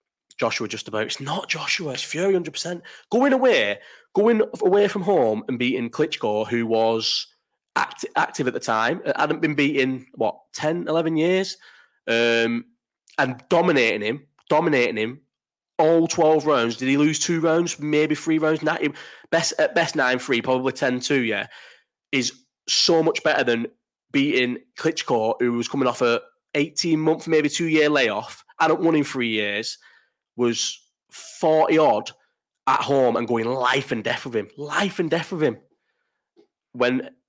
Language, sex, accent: English, male, British